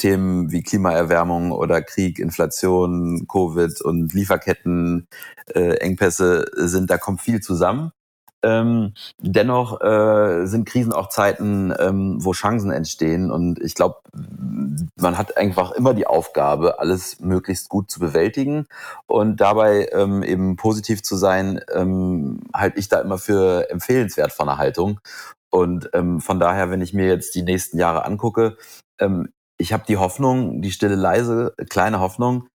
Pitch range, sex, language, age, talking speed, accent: 90-110 Hz, male, German, 30-49, 145 wpm, German